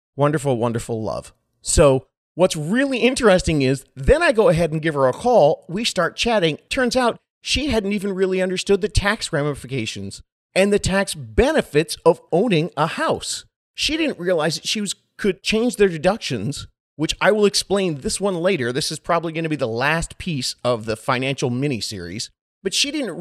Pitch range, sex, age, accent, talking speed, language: 120-195 Hz, male, 40-59, American, 185 wpm, English